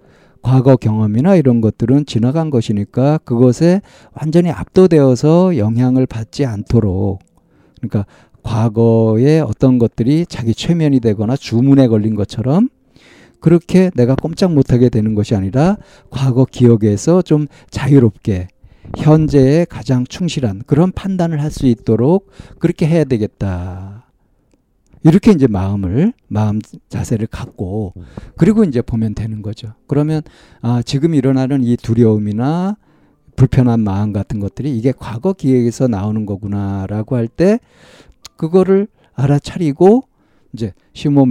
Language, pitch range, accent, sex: Korean, 110-155 Hz, native, male